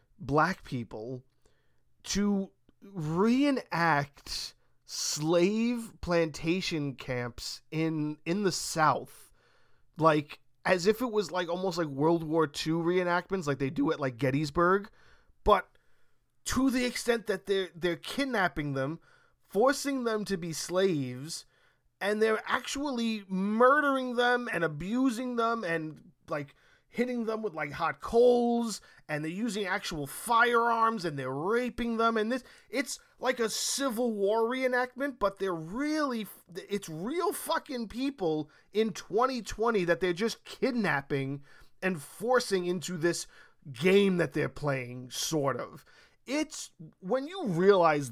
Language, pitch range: English, 155-230 Hz